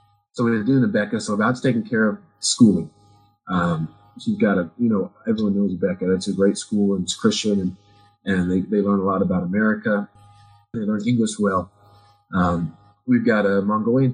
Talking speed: 195 wpm